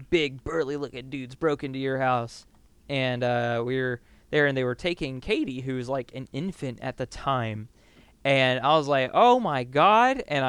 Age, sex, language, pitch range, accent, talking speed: 20-39, male, English, 120-140 Hz, American, 190 wpm